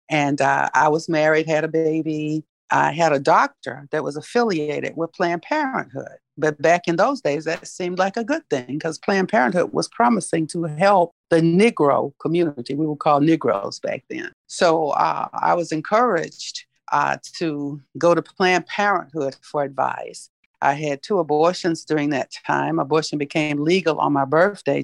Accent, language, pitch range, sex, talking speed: American, English, 150-185 Hz, female, 170 wpm